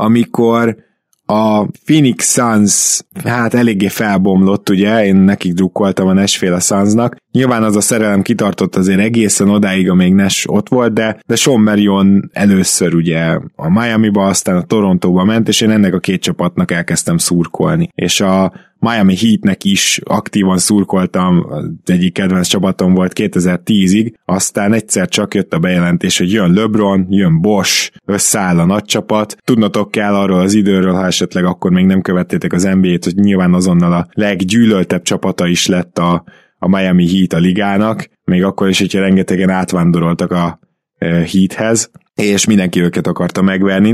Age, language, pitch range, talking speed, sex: 20-39, Hungarian, 90-110 Hz, 155 wpm, male